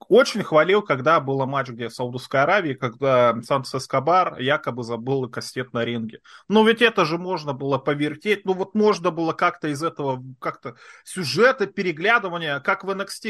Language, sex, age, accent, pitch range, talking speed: Russian, male, 20-39, native, 135-200 Hz, 170 wpm